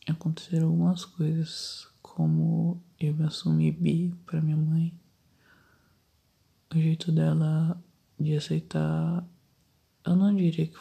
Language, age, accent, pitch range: Portuguese, 20-39, Brazilian, 140-175 Hz